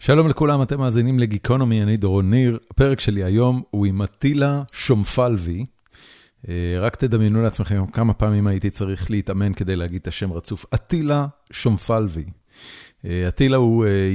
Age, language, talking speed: 40-59, Hebrew, 135 wpm